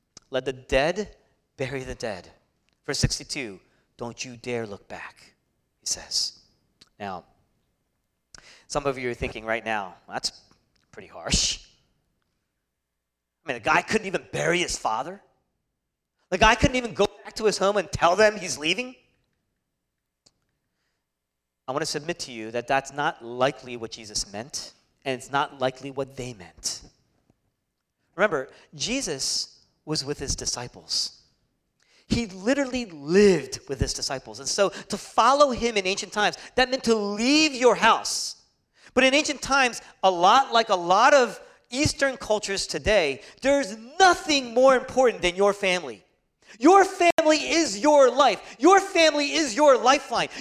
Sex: male